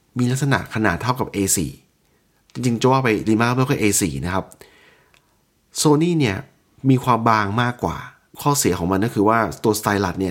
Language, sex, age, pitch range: Thai, male, 20-39, 100-130 Hz